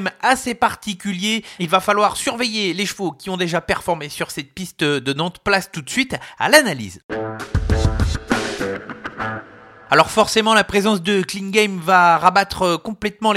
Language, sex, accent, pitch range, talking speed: French, male, French, 180-215 Hz, 140 wpm